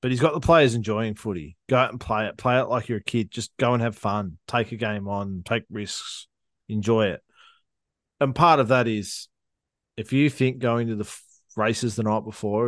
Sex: male